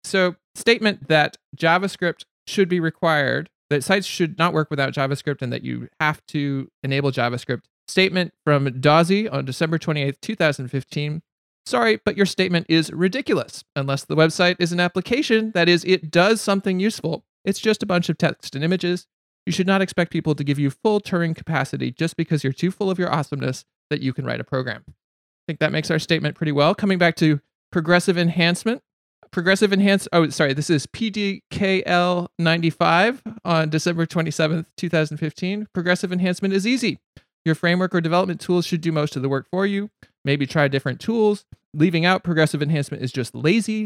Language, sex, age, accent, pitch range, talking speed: English, male, 30-49, American, 150-185 Hz, 180 wpm